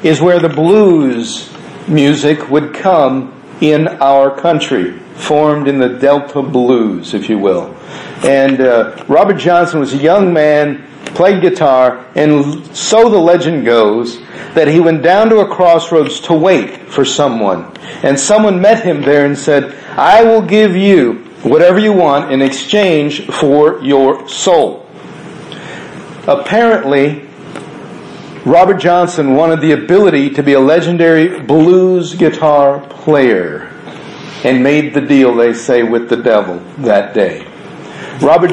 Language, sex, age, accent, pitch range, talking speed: English, male, 50-69, American, 135-175 Hz, 135 wpm